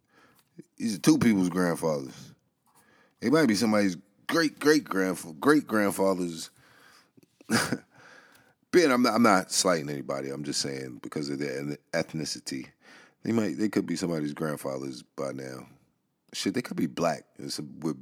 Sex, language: male, English